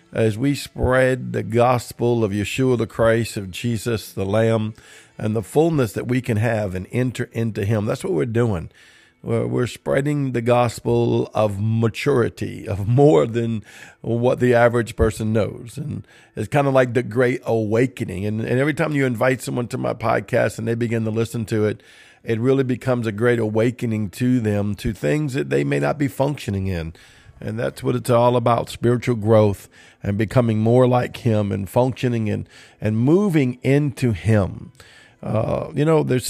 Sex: male